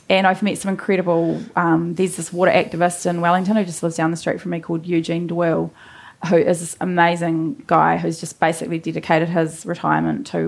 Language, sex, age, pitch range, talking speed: English, female, 20-39, 165-200 Hz, 200 wpm